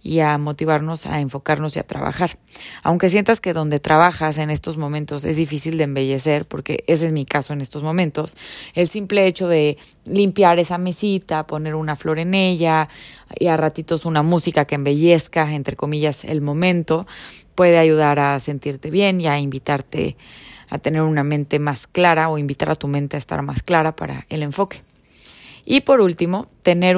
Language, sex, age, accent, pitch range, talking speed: Spanish, female, 20-39, Mexican, 145-175 Hz, 180 wpm